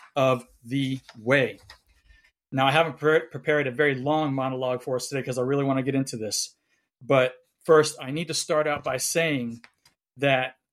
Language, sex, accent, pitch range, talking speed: English, male, American, 130-160 Hz, 180 wpm